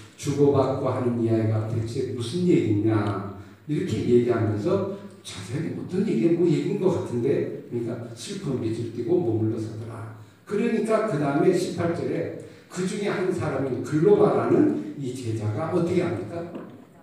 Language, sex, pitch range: Korean, male, 115-180 Hz